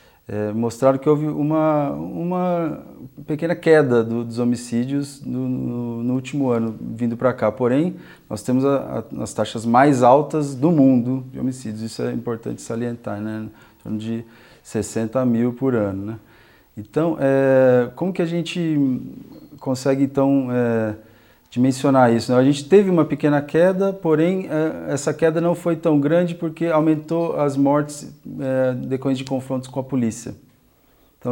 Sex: male